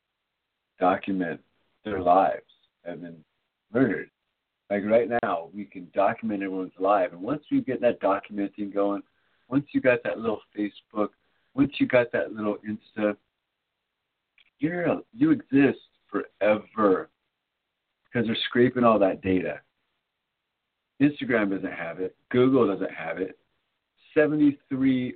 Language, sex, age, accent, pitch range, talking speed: English, male, 50-69, American, 95-140 Hz, 125 wpm